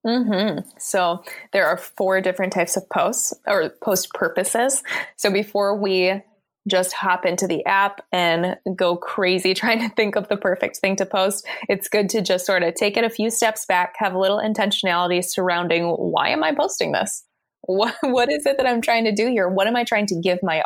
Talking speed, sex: 210 wpm, female